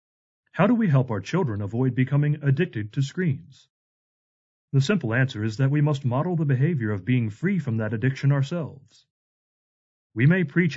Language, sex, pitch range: English, male, 115-145 Hz